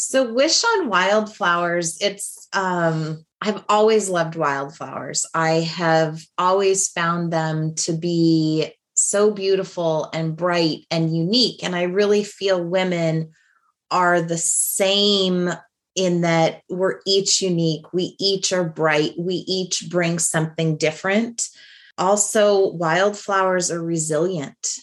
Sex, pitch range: female, 165-200 Hz